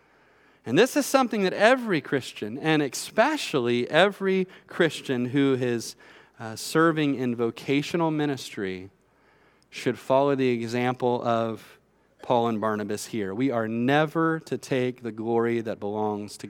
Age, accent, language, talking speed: 30-49, American, English, 135 wpm